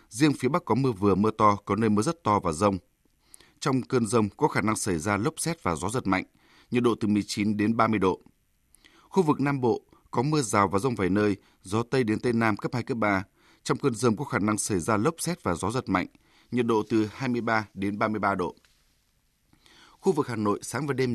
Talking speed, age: 240 wpm, 20-39